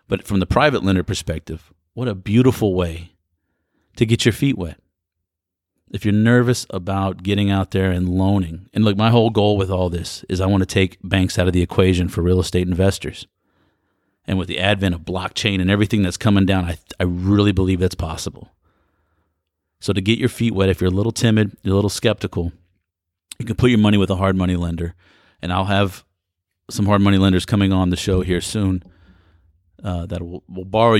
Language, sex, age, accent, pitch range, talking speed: English, male, 40-59, American, 90-105 Hz, 205 wpm